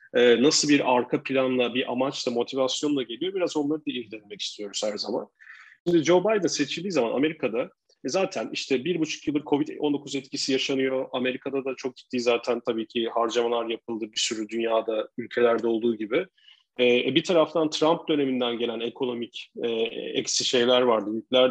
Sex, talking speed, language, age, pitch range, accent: male, 160 wpm, Turkish, 40-59, 120-155 Hz, native